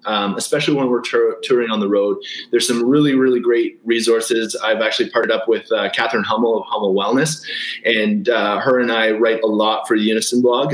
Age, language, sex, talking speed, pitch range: 20-39, English, male, 205 wpm, 120-150 Hz